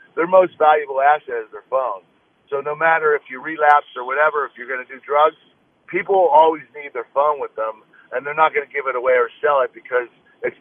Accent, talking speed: American, 230 wpm